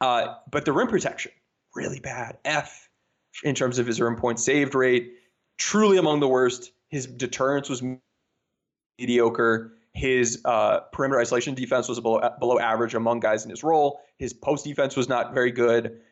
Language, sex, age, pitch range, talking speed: English, male, 20-39, 115-140 Hz, 170 wpm